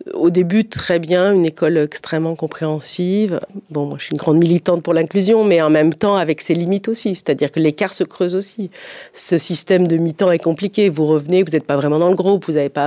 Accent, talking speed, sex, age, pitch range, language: French, 230 wpm, female, 40-59, 145-185 Hz, French